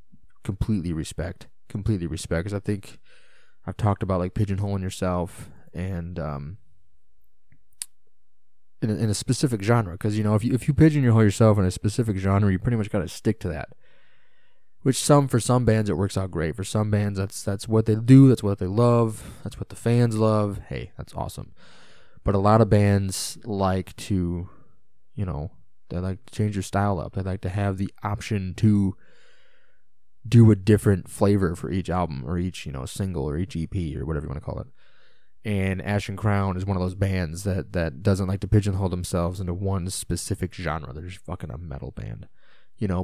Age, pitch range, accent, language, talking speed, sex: 20-39, 90-105 Hz, American, English, 200 wpm, male